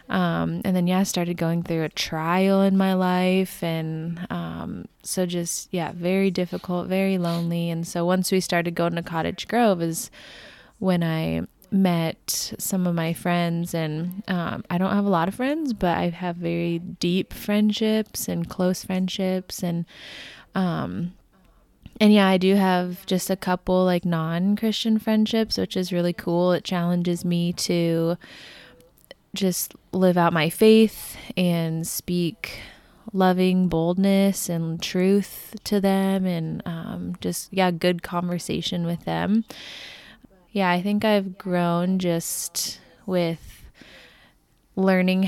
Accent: American